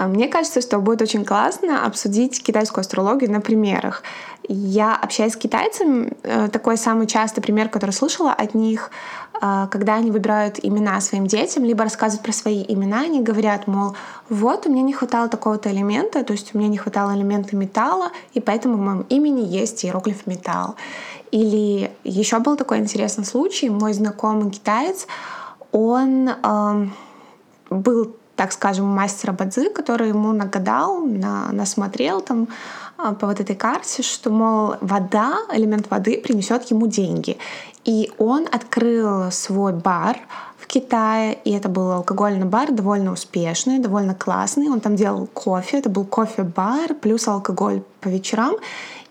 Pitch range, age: 205-245 Hz, 20-39